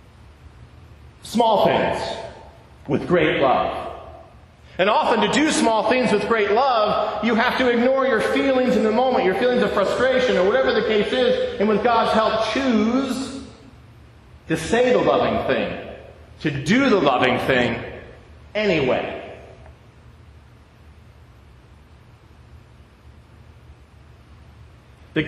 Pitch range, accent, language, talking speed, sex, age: 180-245 Hz, American, English, 115 wpm, male, 50-69